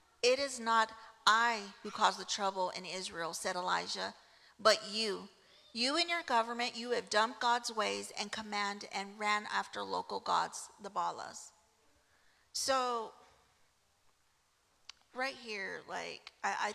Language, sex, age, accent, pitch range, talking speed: English, female, 40-59, American, 190-230 Hz, 135 wpm